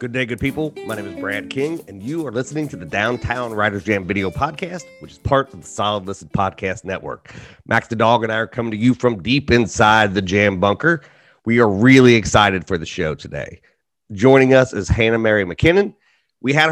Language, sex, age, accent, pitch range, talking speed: English, male, 30-49, American, 100-125 Hz, 215 wpm